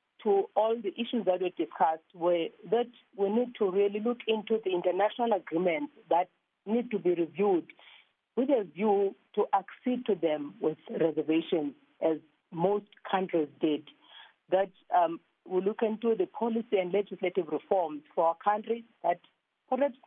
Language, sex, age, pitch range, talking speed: English, female, 40-59, 175-225 Hz, 155 wpm